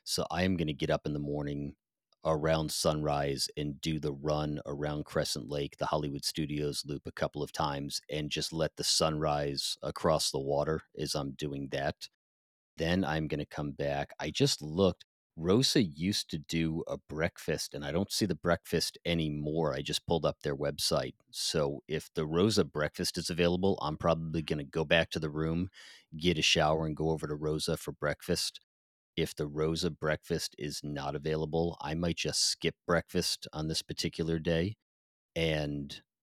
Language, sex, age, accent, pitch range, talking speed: English, male, 40-59, American, 75-85 Hz, 180 wpm